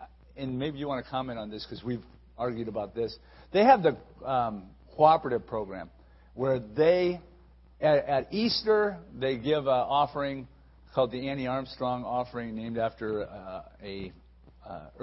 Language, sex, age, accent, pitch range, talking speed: English, male, 50-69, American, 100-135 Hz, 150 wpm